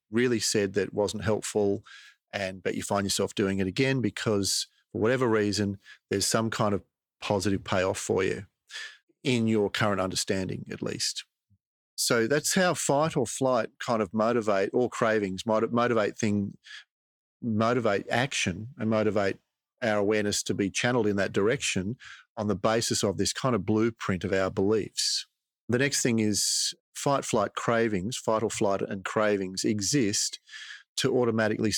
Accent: Australian